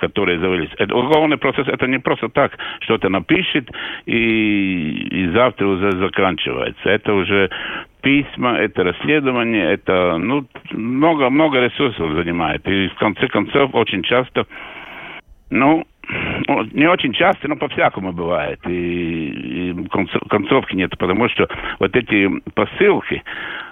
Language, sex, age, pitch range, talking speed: Russian, male, 60-79, 90-125 Hz, 125 wpm